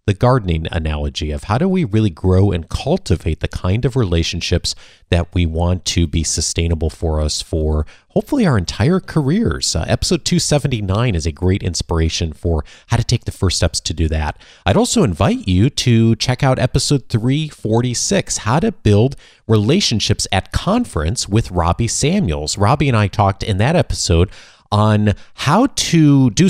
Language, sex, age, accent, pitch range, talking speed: English, male, 40-59, American, 85-115 Hz, 170 wpm